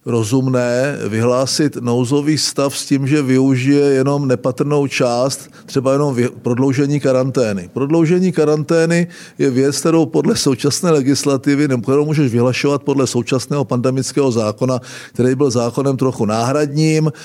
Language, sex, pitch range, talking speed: Czech, male, 125-150 Hz, 125 wpm